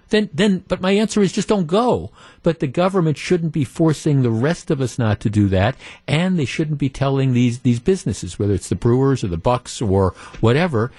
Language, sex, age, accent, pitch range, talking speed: English, male, 50-69, American, 110-155 Hz, 220 wpm